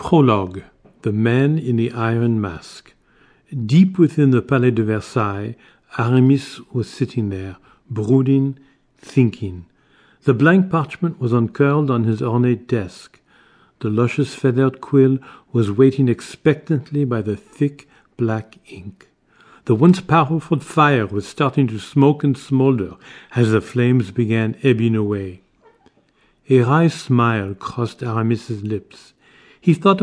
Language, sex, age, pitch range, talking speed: English, male, 50-69, 115-145 Hz, 125 wpm